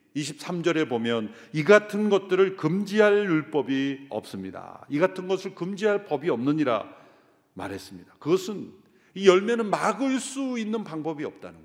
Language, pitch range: Korean, 180-235 Hz